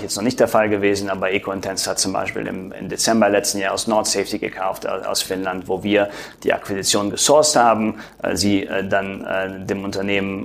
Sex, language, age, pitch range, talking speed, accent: male, German, 30-49, 95-105 Hz, 205 wpm, German